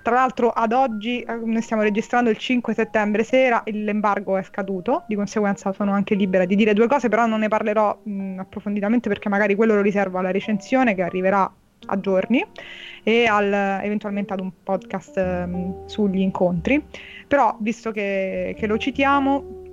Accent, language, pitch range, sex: native, Italian, 205-230 Hz, female